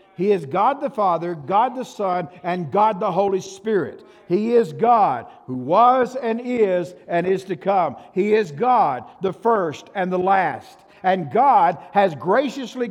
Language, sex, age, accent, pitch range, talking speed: English, male, 60-79, American, 180-245 Hz, 165 wpm